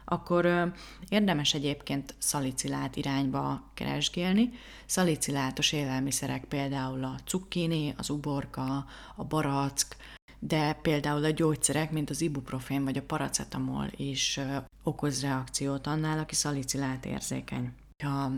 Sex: female